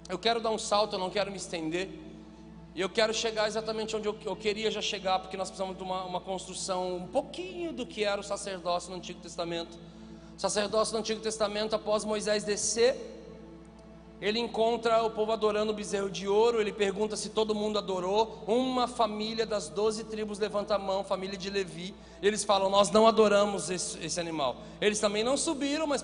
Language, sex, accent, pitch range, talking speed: Portuguese, male, Brazilian, 200-240 Hz, 195 wpm